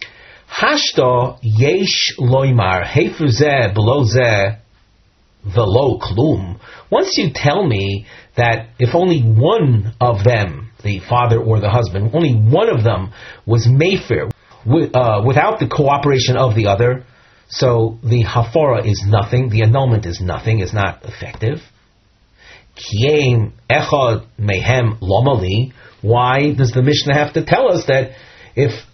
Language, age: English, 40-59